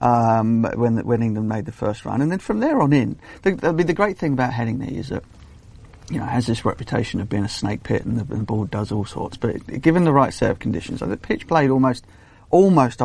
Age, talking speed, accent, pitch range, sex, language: 40-59, 265 wpm, British, 110-135 Hz, male, English